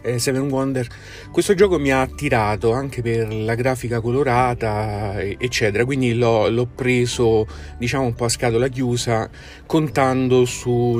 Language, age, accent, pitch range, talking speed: Italian, 40-59, native, 110-135 Hz, 125 wpm